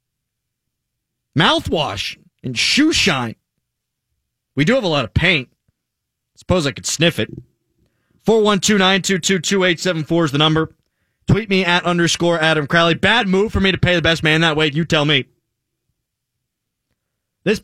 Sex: male